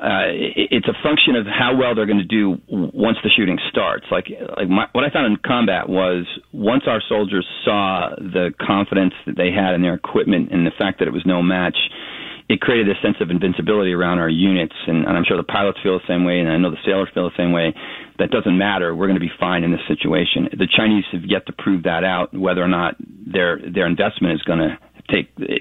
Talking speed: 235 wpm